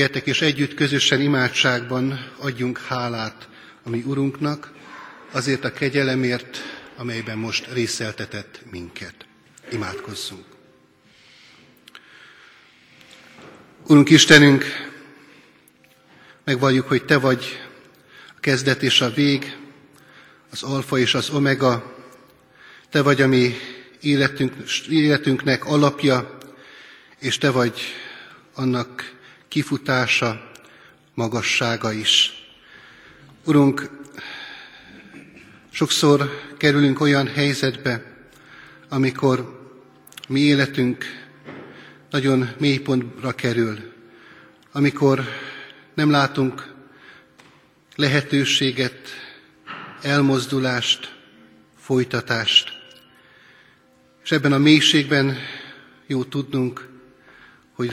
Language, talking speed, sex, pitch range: Hungarian, 75 wpm, male, 125-140 Hz